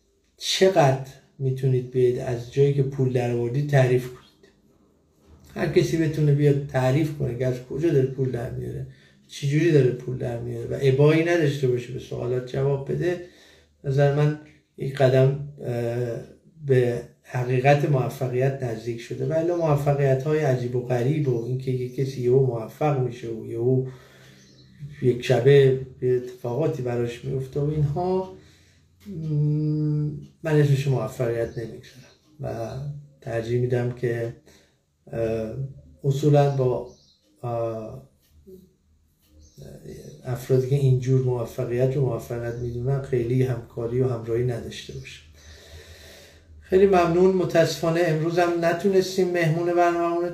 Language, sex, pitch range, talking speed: Persian, male, 120-150 Hz, 120 wpm